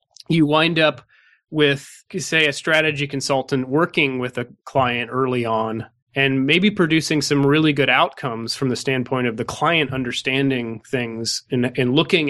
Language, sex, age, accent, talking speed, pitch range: English, male, 30-49, American, 155 wpm, 135-160 Hz